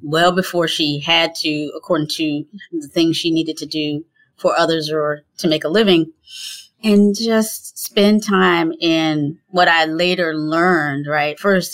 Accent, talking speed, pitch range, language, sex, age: American, 160 wpm, 155-185 Hz, English, female, 30-49